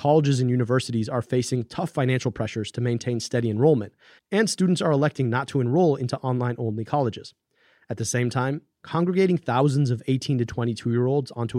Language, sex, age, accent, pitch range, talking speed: English, male, 30-49, American, 115-145 Hz, 170 wpm